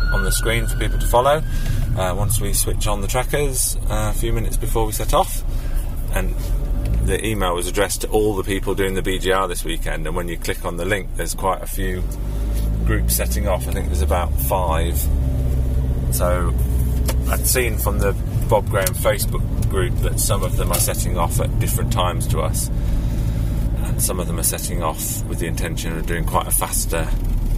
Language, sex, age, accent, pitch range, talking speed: English, male, 30-49, British, 85-115 Hz, 200 wpm